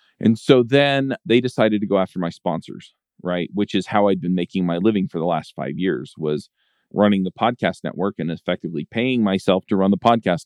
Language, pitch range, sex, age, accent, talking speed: English, 90-110 Hz, male, 40-59, American, 210 wpm